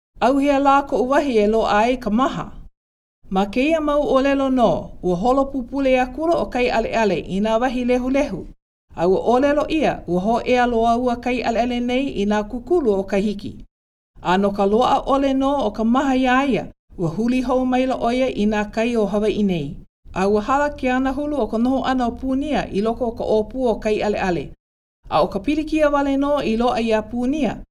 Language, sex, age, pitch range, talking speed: English, female, 50-69, 210-265 Hz, 175 wpm